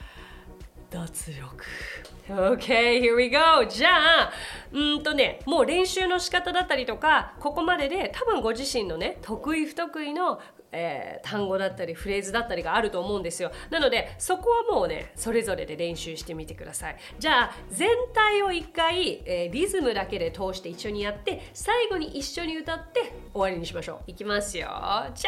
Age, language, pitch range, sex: 30-49, Japanese, 195-300 Hz, female